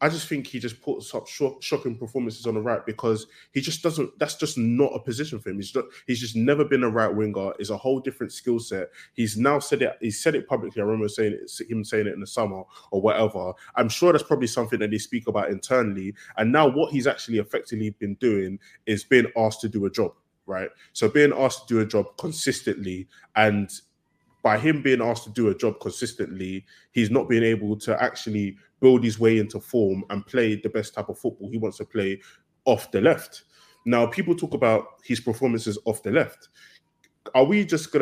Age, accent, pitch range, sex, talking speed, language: 20-39, British, 110-150 Hz, male, 220 wpm, English